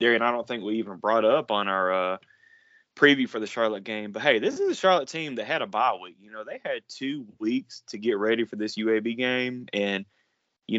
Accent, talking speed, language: American, 240 wpm, English